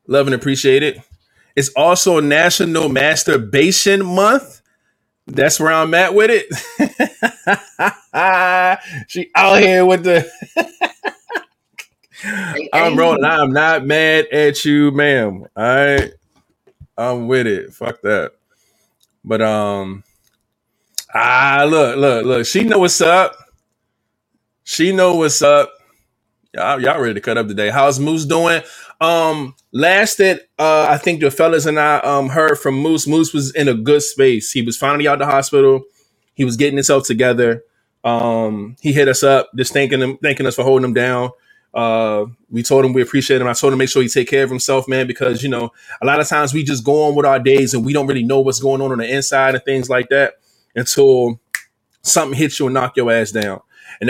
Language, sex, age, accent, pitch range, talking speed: English, male, 20-39, American, 125-160 Hz, 180 wpm